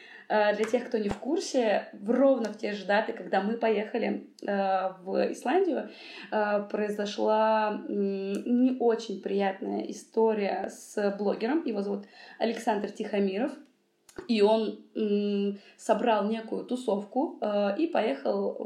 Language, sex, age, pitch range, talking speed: Russian, female, 20-39, 205-255 Hz, 110 wpm